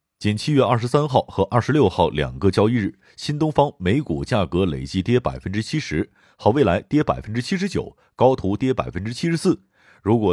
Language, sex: Chinese, male